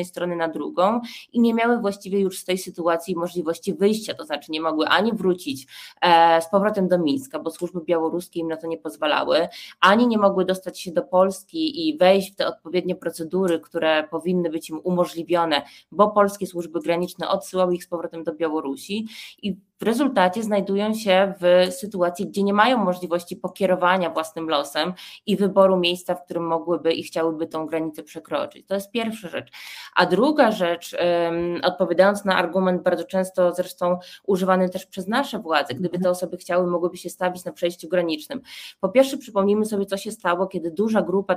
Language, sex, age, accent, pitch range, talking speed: Polish, female, 20-39, native, 170-195 Hz, 175 wpm